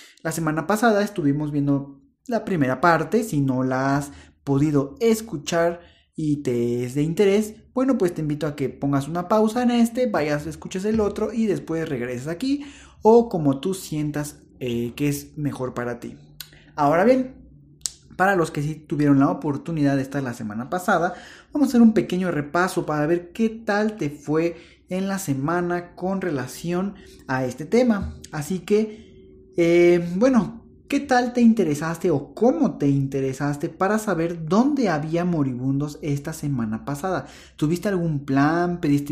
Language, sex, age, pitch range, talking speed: Spanish, male, 30-49, 140-200 Hz, 165 wpm